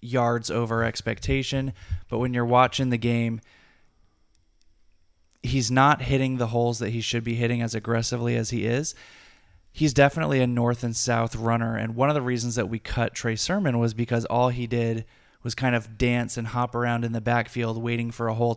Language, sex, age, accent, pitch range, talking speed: English, male, 20-39, American, 115-125 Hz, 195 wpm